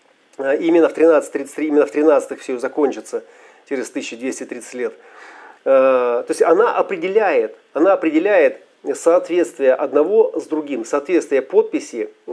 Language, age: Russian, 40-59